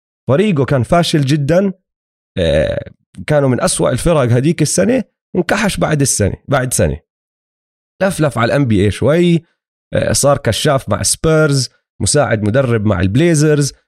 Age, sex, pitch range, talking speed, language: 30-49, male, 110-160 Hz, 130 wpm, Arabic